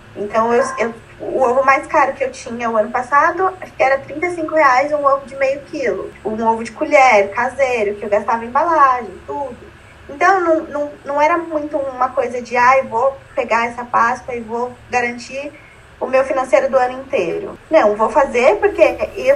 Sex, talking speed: female, 190 wpm